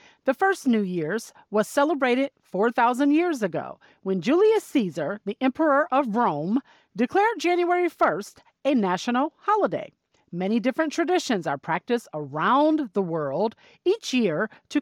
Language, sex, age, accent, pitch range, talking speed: English, female, 40-59, American, 200-295 Hz, 135 wpm